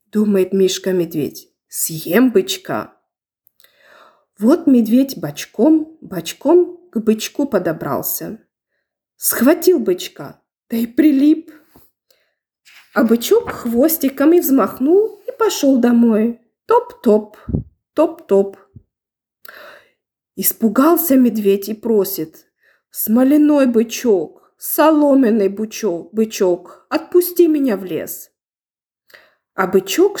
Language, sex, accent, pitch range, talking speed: Ukrainian, female, native, 205-300 Hz, 80 wpm